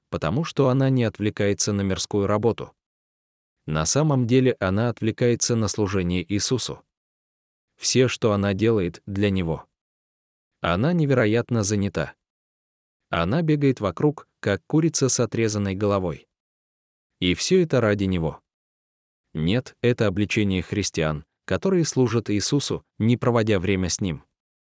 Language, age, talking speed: Russian, 20-39, 120 wpm